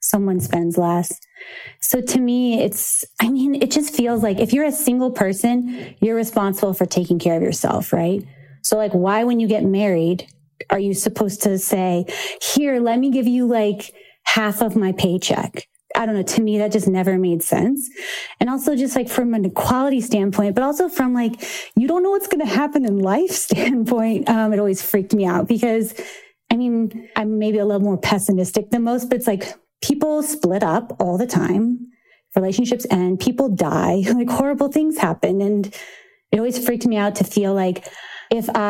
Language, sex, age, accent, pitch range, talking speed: English, female, 30-49, American, 195-245 Hz, 190 wpm